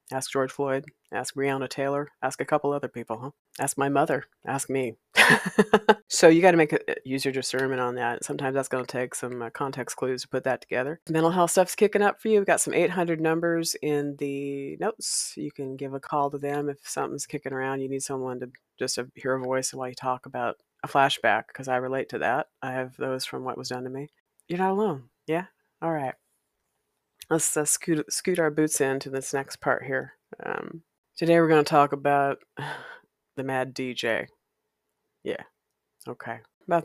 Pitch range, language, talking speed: 130-150 Hz, English, 200 wpm